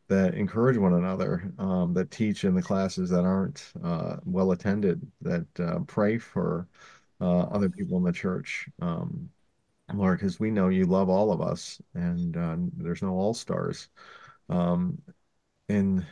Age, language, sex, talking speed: 40-59, English, male, 160 wpm